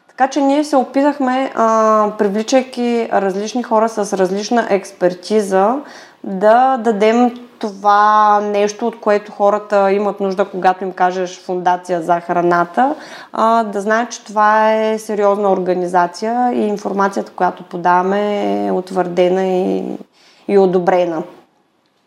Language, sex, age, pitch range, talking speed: Bulgarian, female, 20-39, 190-225 Hz, 115 wpm